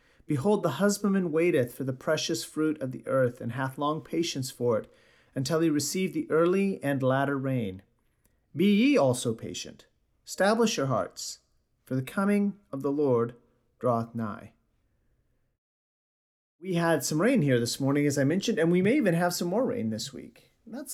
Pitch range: 125-190 Hz